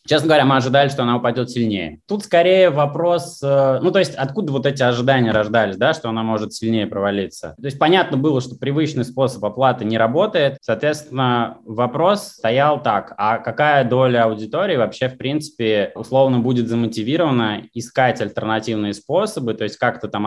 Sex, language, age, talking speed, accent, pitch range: male, Russian, 20-39, 165 wpm, native, 100-125 Hz